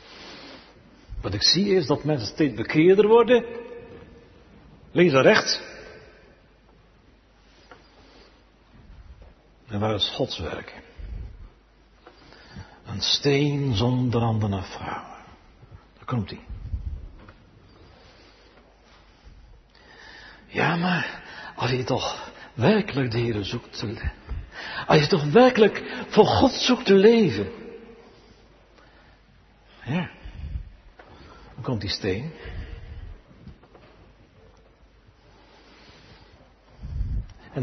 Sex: male